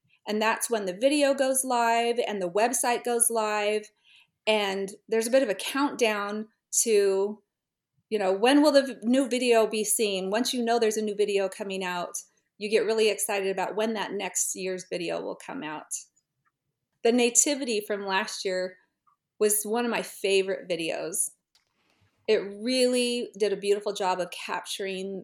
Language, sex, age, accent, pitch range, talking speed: English, female, 30-49, American, 190-230 Hz, 165 wpm